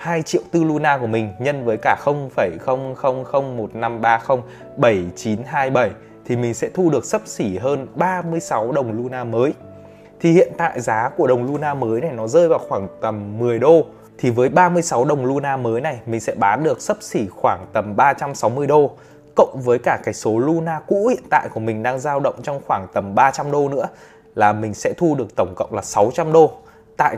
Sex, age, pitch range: male, 20-39, 115-155 Hz